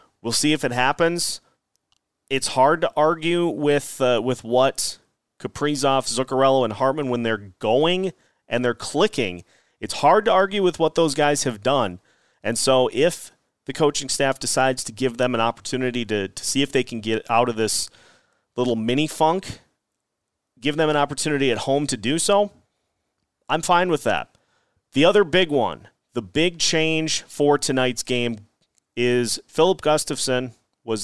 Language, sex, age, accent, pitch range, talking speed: English, male, 30-49, American, 115-150 Hz, 160 wpm